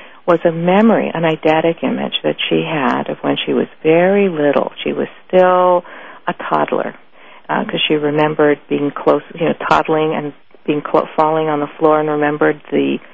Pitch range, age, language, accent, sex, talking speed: 140-165 Hz, 50-69, English, American, female, 180 wpm